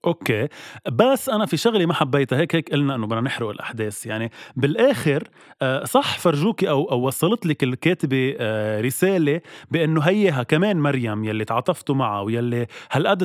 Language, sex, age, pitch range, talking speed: Arabic, male, 20-39, 125-170 Hz, 150 wpm